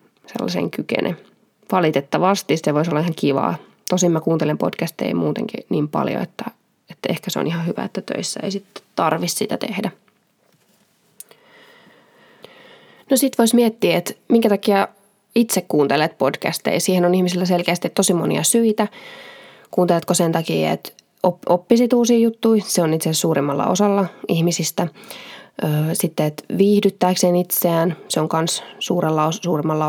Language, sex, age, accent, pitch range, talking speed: Finnish, female, 20-39, native, 170-215 Hz, 140 wpm